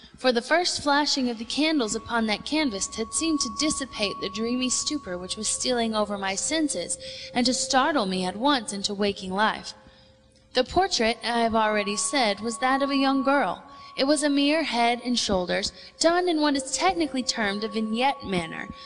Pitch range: 205-275 Hz